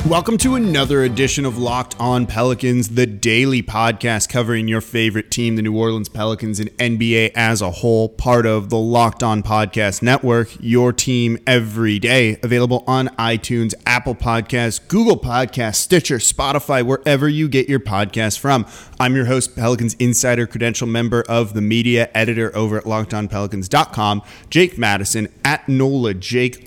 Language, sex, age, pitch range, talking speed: English, male, 30-49, 115-145 Hz, 155 wpm